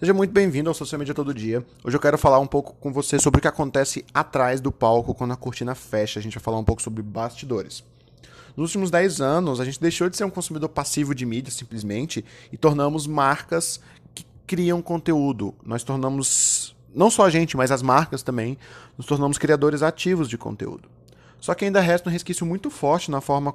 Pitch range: 120-160 Hz